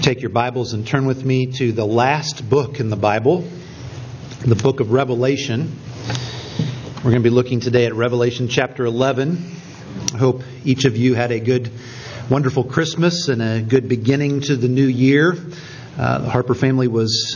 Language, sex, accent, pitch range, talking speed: English, male, American, 120-140 Hz, 175 wpm